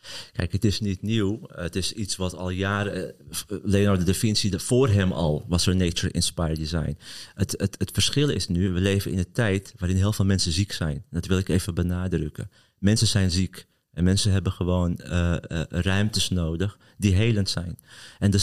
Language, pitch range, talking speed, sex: Dutch, 95-120 Hz, 200 wpm, male